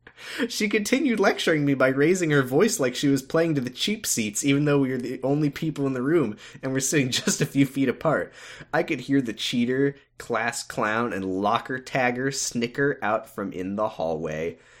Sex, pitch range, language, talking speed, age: male, 95-140 Hz, English, 200 wpm, 20-39